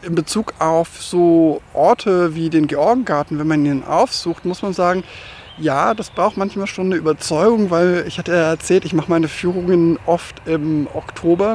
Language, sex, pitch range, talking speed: German, male, 150-180 Hz, 175 wpm